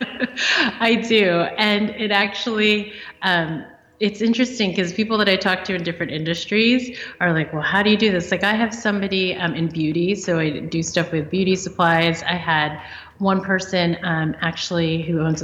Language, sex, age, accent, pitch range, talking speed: English, female, 30-49, American, 170-215 Hz, 185 wpm